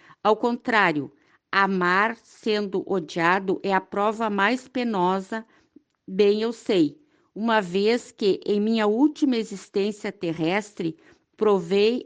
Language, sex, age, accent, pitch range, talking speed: Portuguese, female, 50-69, Brazilian, 195-230 Hz, 110 wpm